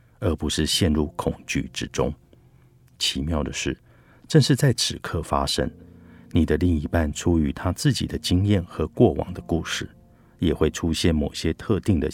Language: Chinese